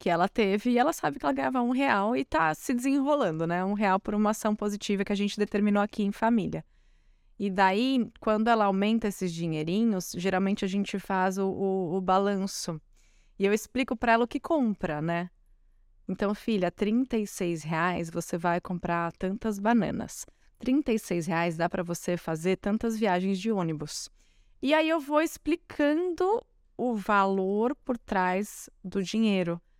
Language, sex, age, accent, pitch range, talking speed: Portuguese, female, 20-39, Brazilian, 185-230 Hz, 165 wpm